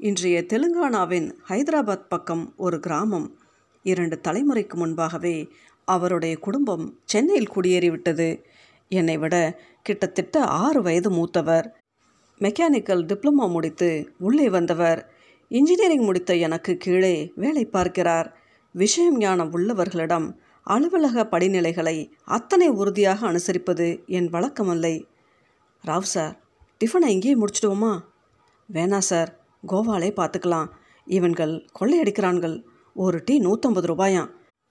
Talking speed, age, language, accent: 95 wpm, 50-69, Tamil, native